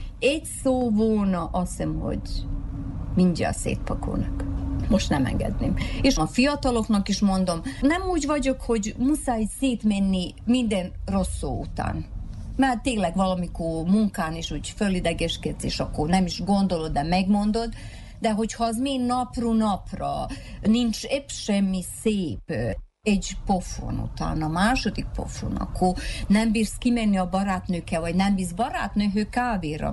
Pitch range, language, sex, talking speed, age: 165-235 Hz, Hungarian, female, 135 wpm, 40-59